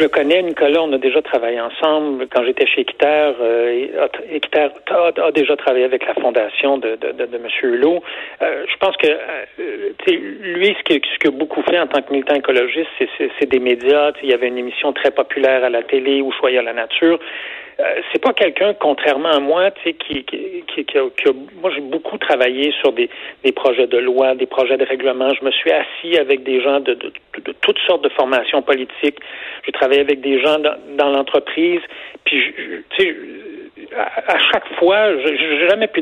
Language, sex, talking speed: French, male, 205 wpm